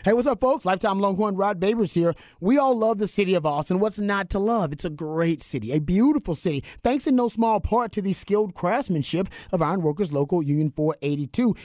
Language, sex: English, male